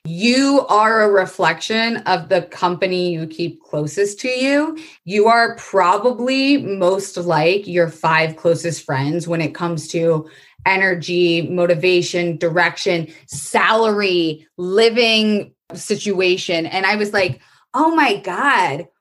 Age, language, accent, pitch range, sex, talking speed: 20-39, English, American, 155-195 Hz, female, 120 wpm